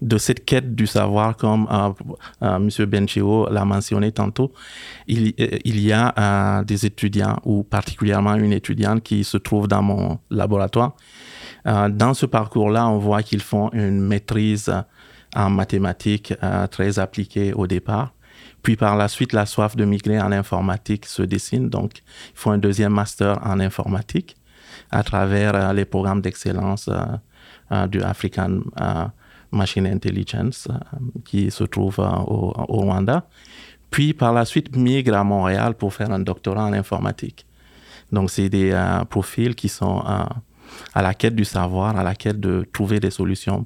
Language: English